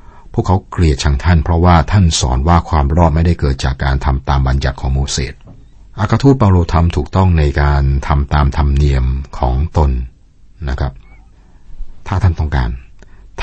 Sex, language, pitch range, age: male, Thai, 70-90 Hz, 60-79